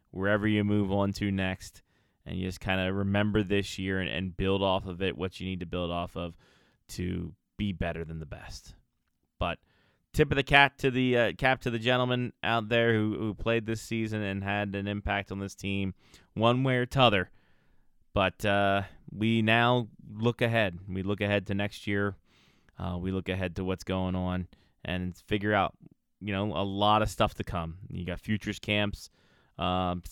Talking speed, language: 195 wpm, English